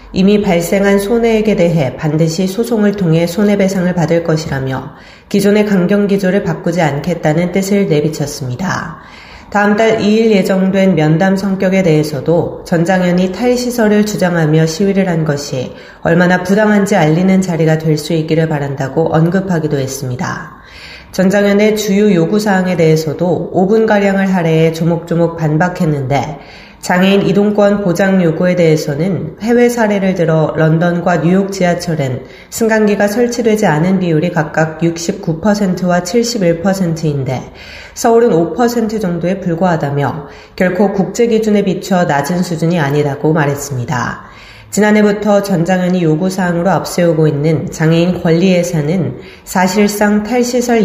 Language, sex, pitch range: Korean, female, 160-200 Hz